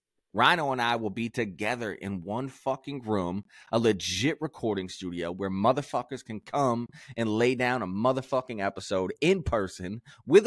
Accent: American